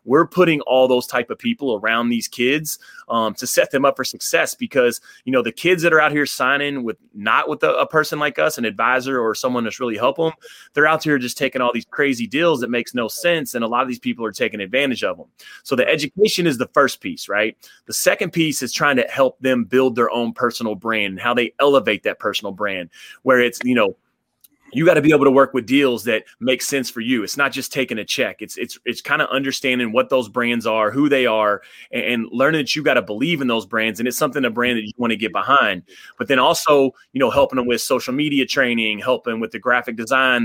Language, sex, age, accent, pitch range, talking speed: English, male, 30-49, American, 115-140 Hz, 250 wpm